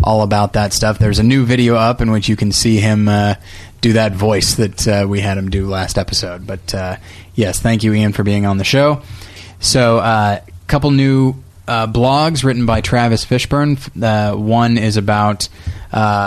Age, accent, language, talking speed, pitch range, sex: 20-39, American, English, 195 wpm, 100-120 Hz, male